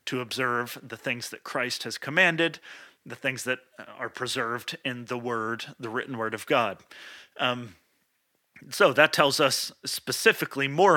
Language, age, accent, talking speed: English, 30-49, American, 155 wpm